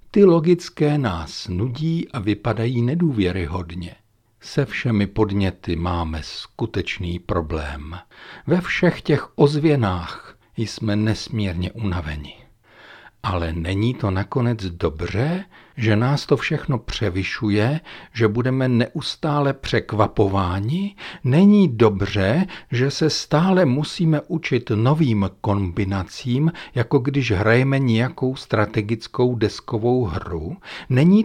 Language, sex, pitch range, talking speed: Czech, male, 90-135 Hz, 100 wpm